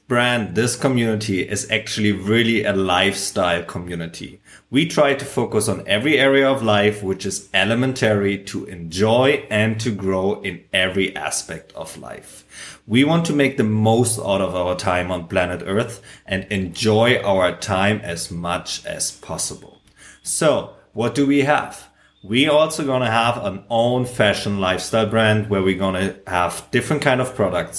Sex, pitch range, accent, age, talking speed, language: male, 95-125 Hz, German, 30-49, 165 wpm, English